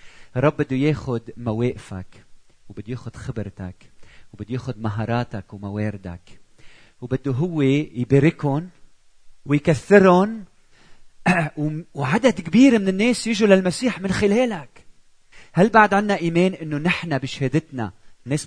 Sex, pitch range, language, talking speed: male, 110-180 Hz, Arabic, 100 wpm